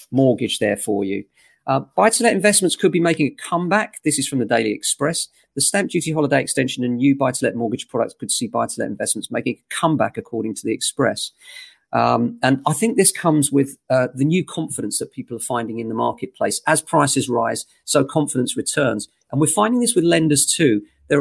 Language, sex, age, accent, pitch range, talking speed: English, male, 40-59, British, 120-155 Hz, 220 wpm